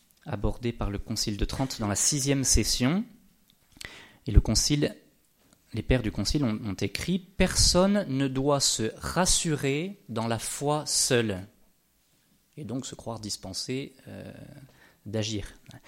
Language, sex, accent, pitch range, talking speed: French, male, French, 110-150 Hz, 130 wpm